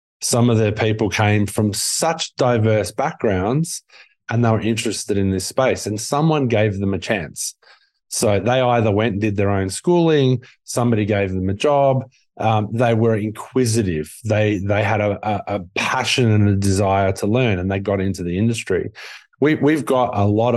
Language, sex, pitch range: English, male, 95-115 Hz